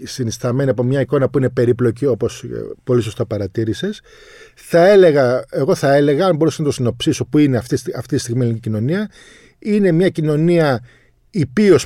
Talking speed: 165 wpm